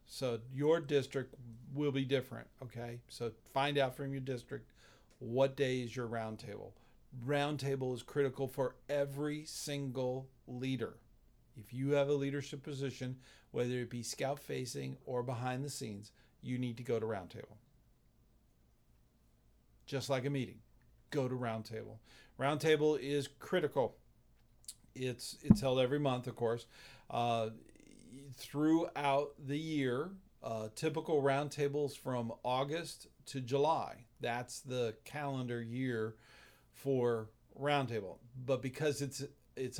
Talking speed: 125 wpm